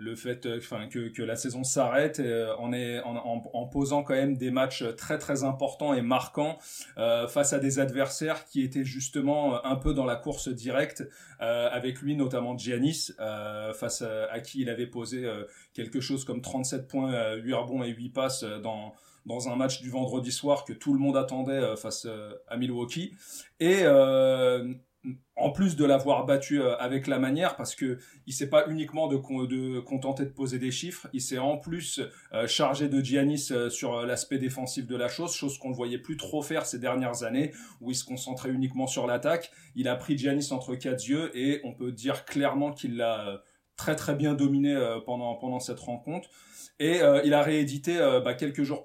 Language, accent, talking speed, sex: French, French, 195 wpm, male